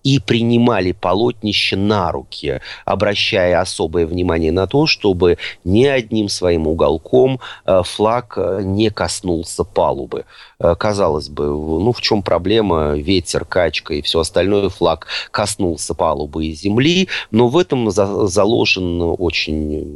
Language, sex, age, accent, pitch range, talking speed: Russian, male, 30-49, native, 85-115 Hz, 120 wpm